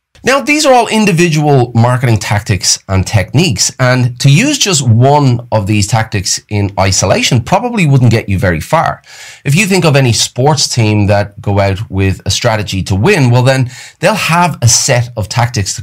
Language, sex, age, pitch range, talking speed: English, male, 30-49, 105-145 Hz, 185 wpm